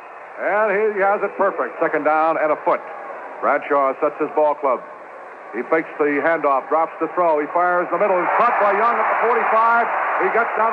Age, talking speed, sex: 60-79, 200 wpm, male